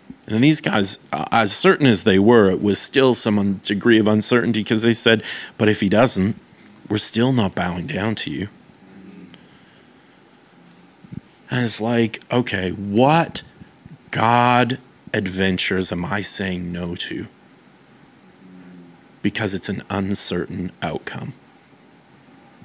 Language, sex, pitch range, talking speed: English, male, 95-125 Hz, 120 wpm